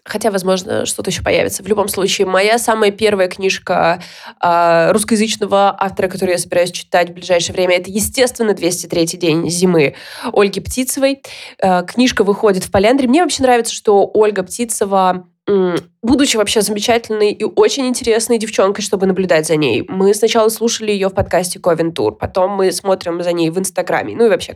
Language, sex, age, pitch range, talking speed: Russian, female, 20-39, 185-240 Hz, 170 wpm